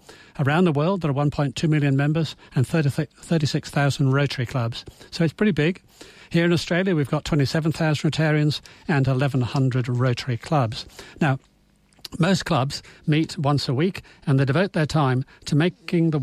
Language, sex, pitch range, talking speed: English, male, 130-160 Hz, 155 wpm